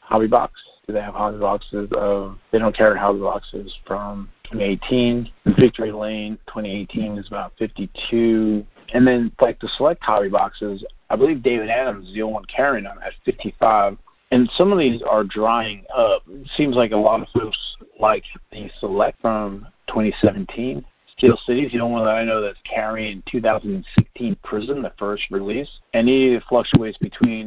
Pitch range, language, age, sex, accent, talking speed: 105-120 Hz, English, 40-59, male, American, 175 wpm